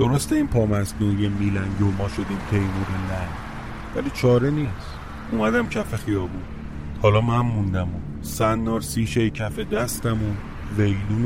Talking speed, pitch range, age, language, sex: 135 wpm, 90-115 Hz, 30-49, Persian, male